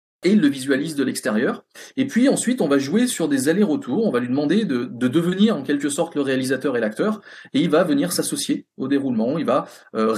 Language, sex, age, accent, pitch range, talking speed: French, male, 30-49, French, 125-195 Hz, 225 wpm